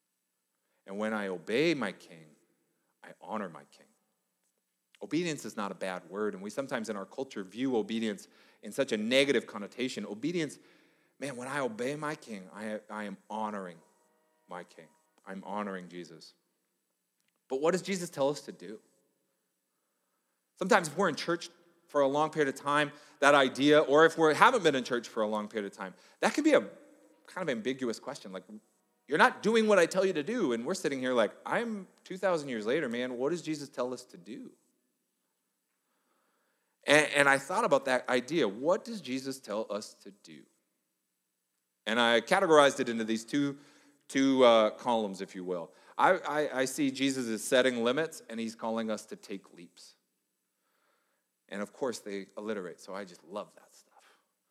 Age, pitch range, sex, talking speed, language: 30-49, 105-150 Hz, male, 185 wpm, English